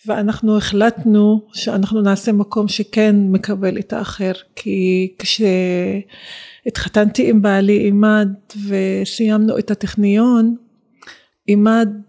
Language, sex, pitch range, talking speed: Hebrew, female, 195-220 Hz, 90 wpm